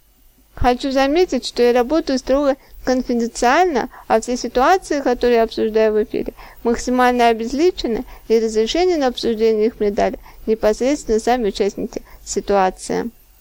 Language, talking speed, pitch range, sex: Russian, 120 wpm, 230-280 Hz, female